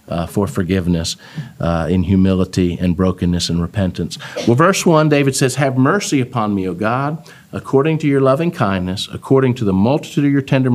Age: 50-69